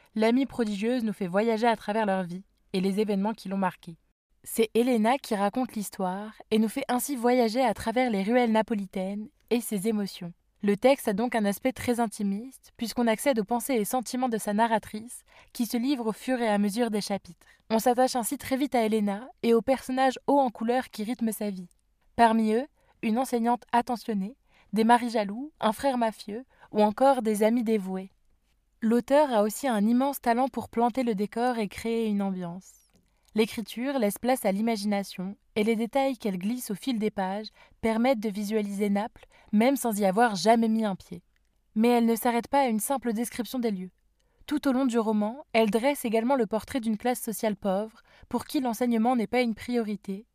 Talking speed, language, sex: 195 wpm, French, female